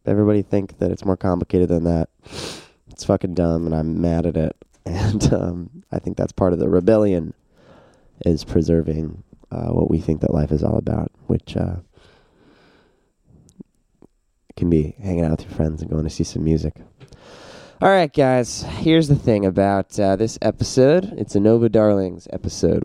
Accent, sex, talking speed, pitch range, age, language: American, male, 175 wpm, 90-120 Hz, 20-39, English